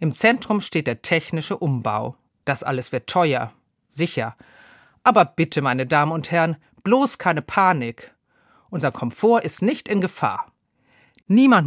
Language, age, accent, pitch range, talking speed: German, 40-59, German, 145-195 Hz, 140 wpm